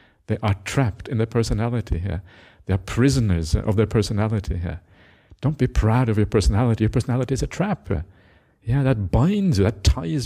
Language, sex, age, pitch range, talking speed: English, male, 50-69, 95-120 Hz, 180 wpm